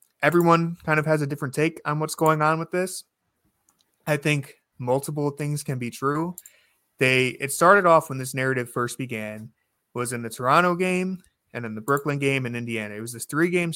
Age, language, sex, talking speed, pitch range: 20-39, English, male, 195 wpm, 120-145 Hz